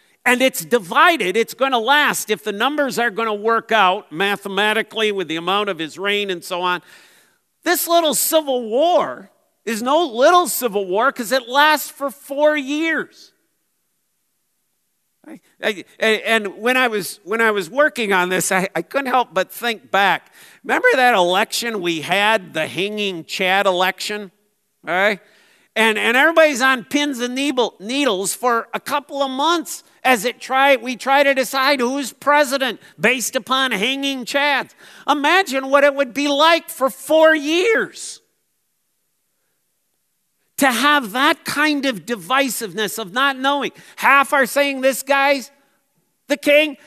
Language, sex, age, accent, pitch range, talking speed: English, male, 50-69, American, 215-290 Hz, 150 wpm